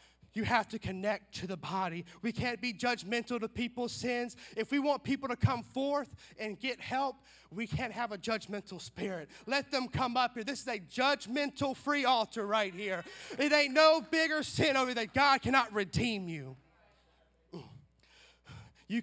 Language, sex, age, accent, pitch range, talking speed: English, male, 30-49, American, 220-275 Hz, 175 wpm